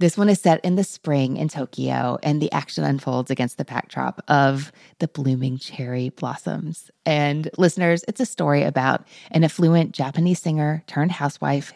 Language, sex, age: English, female, 30-49